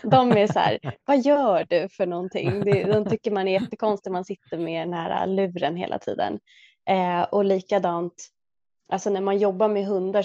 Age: 20-39